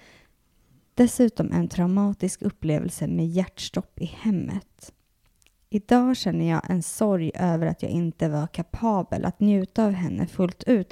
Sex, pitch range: female, 170-210 Hz